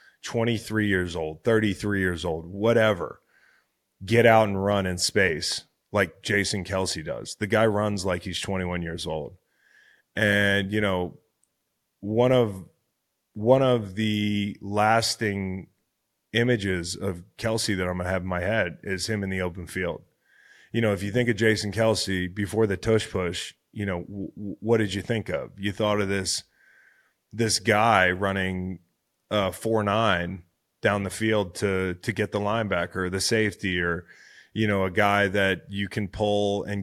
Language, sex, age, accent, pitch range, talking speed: English, male, 30-49, American, 95-110 Hz, 165 wpm